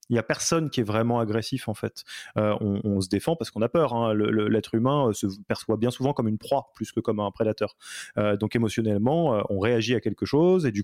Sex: male